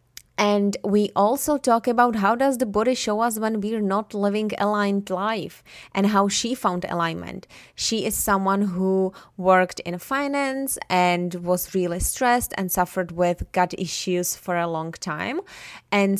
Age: 20-39